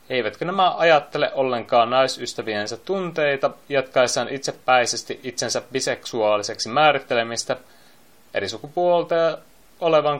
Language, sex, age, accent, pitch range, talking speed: Finnish, male, 20-39, native, 115-150 Hz, 80 wpm